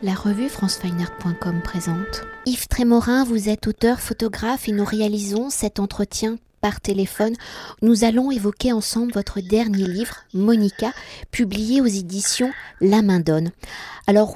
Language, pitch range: French, 195-230 Hz